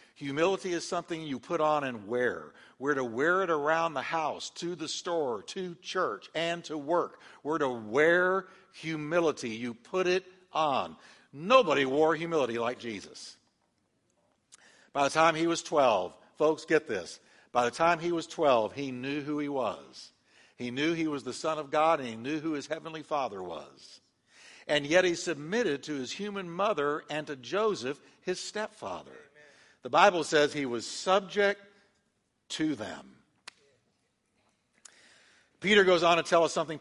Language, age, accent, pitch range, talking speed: English, 60-79, American, 135-175 Hz, 165 wpm